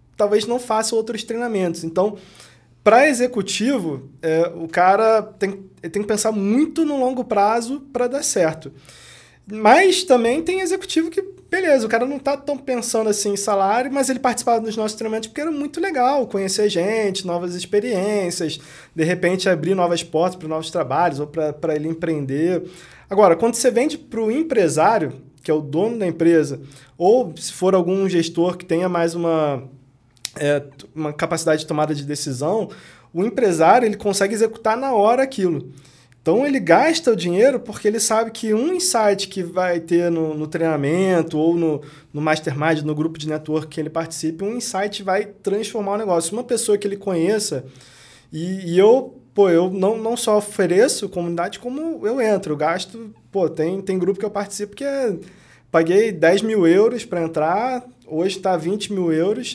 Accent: Brazilian